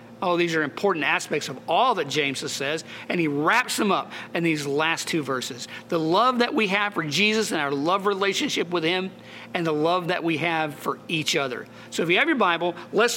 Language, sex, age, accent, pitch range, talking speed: English, male, 50-69, American, 155-205 Hz, 225 wpm